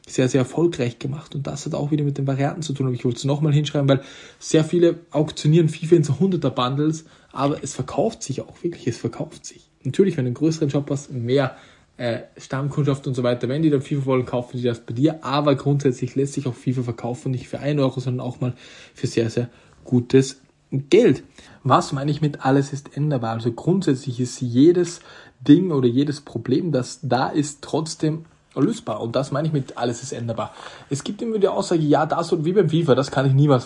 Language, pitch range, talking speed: German, 125-155 Hz, 220 wpm